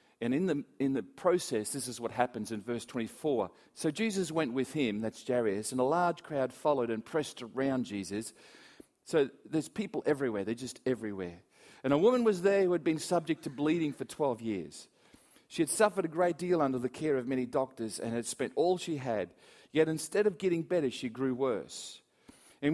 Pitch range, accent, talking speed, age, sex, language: 115-160 Hz, Australian, 205 wpm, 40-59, male, English